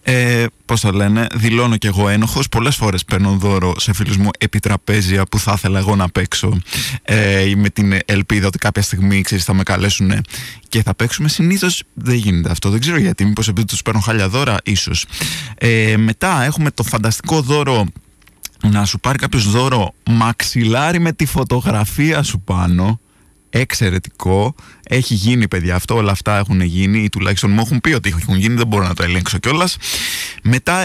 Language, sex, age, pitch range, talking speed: Greek, male, 20-39, 100-130 Hz, 175 wpm